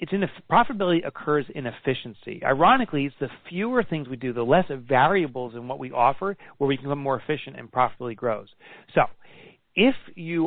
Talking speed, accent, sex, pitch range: 185 wpm, American, male, 125-170 Hz